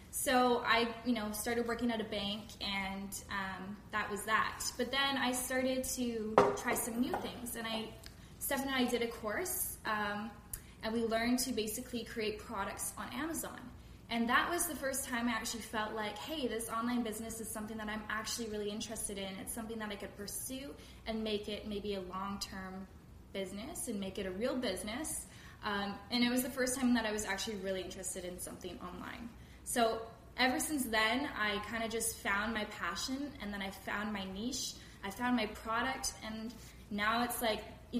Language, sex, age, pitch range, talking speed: English, female, 10-29, 210-240 Hz, 195 wpm